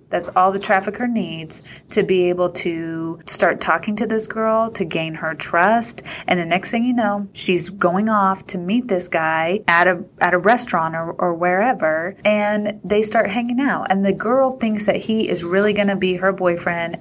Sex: female